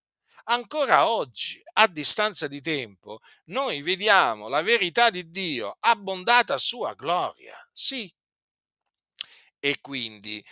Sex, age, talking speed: male, 50-69, 110 wpm